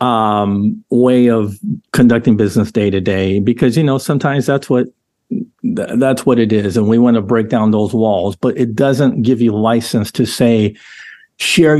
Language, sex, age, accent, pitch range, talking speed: English, male, 50-69, American, 115-140 Hz, 180 wpm